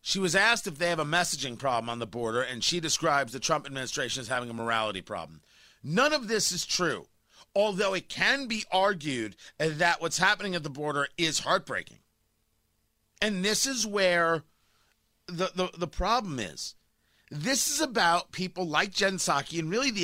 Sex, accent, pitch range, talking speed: male, American, 165-220 Hz, 180 wpm